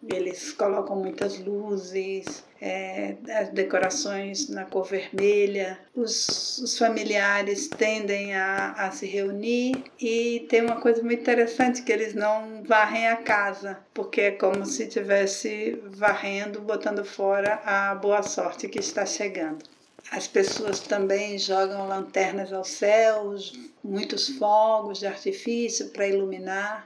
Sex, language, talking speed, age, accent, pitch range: female, Portuguese, 125 wpm, 50-69, Brazilian, 200-230 Hz